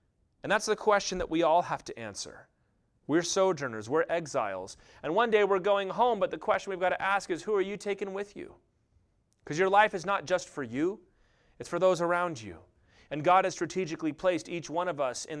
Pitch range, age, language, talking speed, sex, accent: 125-180 Hz, 30-49, English, 220 wpm, male, American